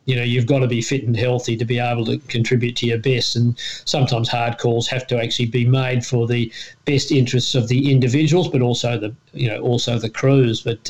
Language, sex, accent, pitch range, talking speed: English, male, Australian, 125-135 Hz, 230 wpm